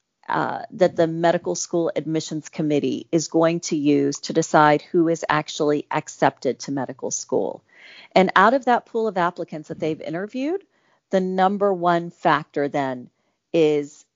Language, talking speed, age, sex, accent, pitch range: English, 155 wpm, 40-59, female, American, 150-200 Hz